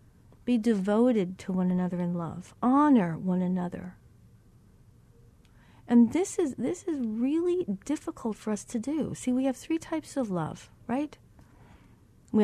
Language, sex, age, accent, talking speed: English, female, 50-69, American, 145 wpm